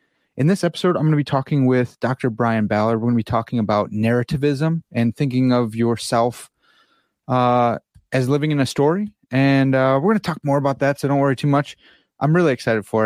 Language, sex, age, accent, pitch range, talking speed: English, male, 30-49, American, 115-140 Hz, 215 wpm